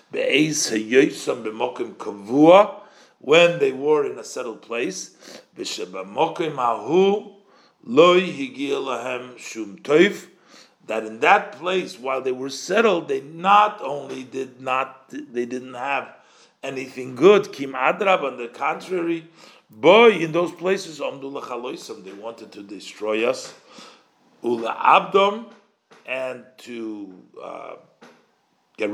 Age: 50-69